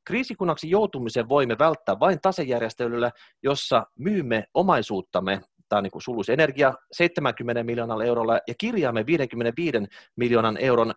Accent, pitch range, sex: native, 120-185 Hz, male